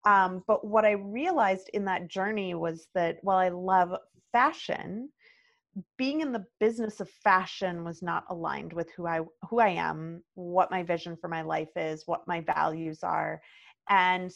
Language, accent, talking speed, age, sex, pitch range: English, American, 165 wpm, 30-49, female, 175-200 Hz